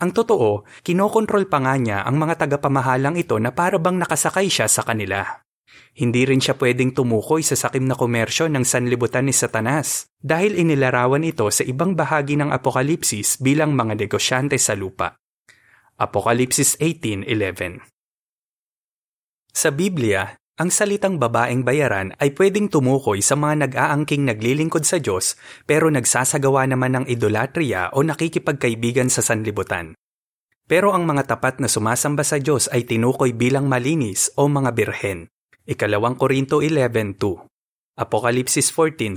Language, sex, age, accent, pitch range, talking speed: Filipino, male, 20-39, native, 120-155 Hz, 135 wpm